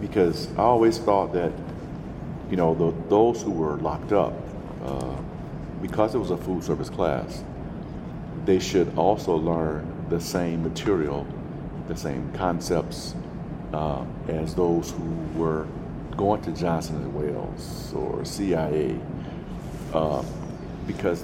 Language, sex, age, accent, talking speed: English, male, 50-69, American, 125 wpm